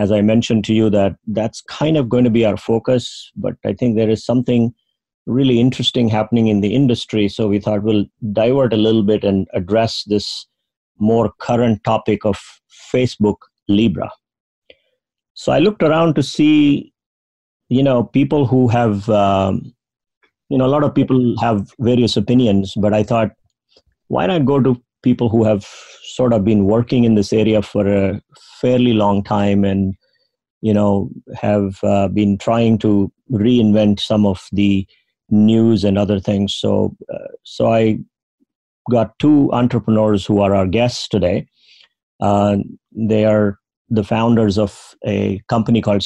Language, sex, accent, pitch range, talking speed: English, male, Indian, 105-120 Hz, 160 wpm